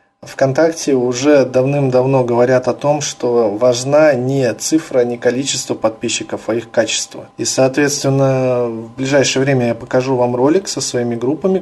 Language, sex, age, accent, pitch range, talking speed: Russian, male, 20-39, native, 120-140 Hz, 145 wpm